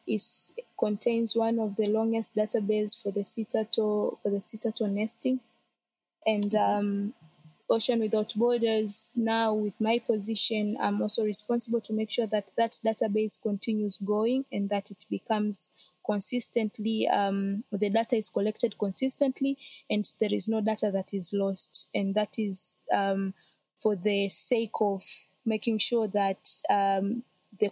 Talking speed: 145 wpm